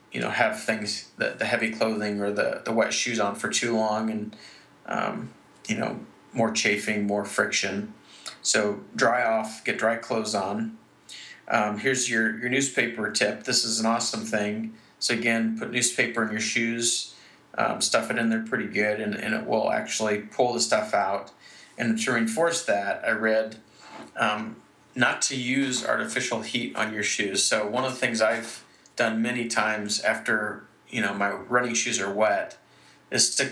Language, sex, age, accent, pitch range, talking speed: English, male, 30-49, American, 105-125 Hz, 180 wpm